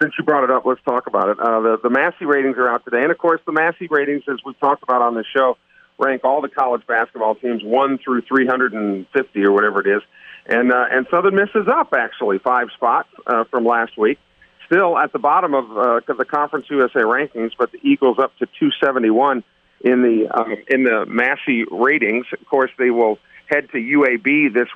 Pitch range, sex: 115-150 Hz, male